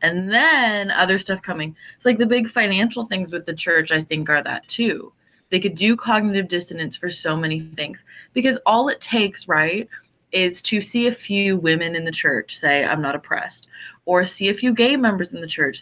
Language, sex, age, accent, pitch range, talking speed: English, female, 20-39, American, 170-225 Hz, 210 wpm